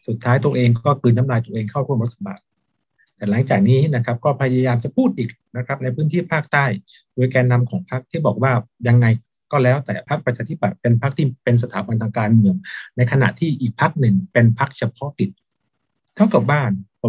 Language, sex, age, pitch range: Thai, male, 60-79, 115-145 Hz